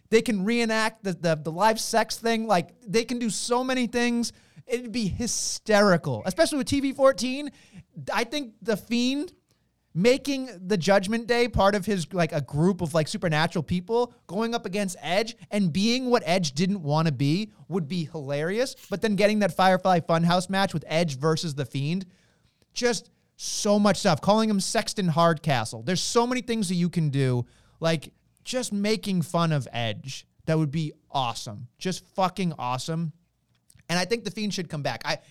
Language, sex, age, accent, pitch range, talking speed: English, male, 30-49, American, 160-225 Hz, 180 wpm